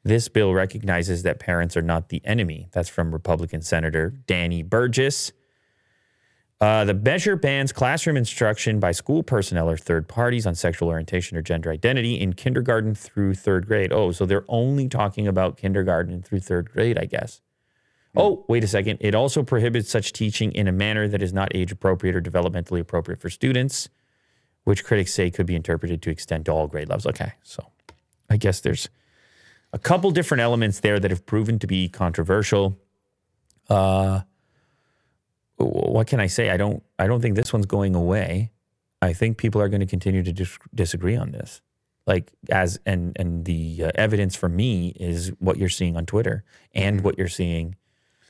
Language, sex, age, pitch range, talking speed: English, male, 30-49, 90-110 Hz, 180 wpm